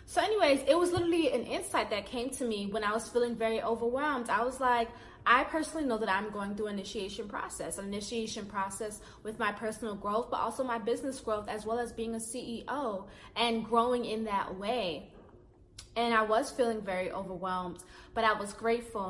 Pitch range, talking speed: 200-245 Hz, 200 wpm